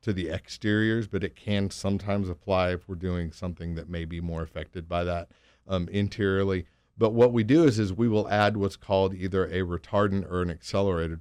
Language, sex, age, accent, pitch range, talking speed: English, male, 40-59, American, 85-105 Hz, 205 wpm